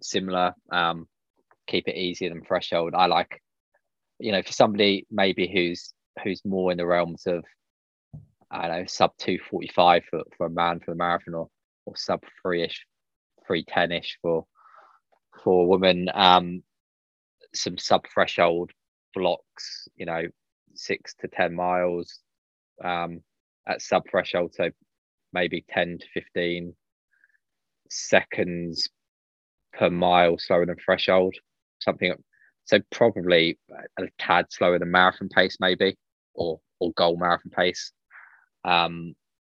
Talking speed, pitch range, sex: 130 wpm, 85-90 Hz, male